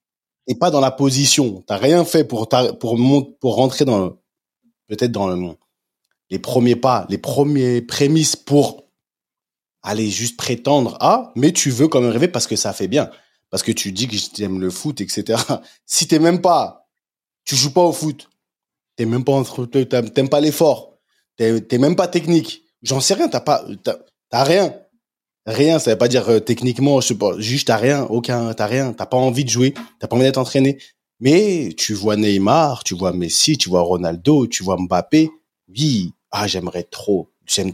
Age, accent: 20-39, French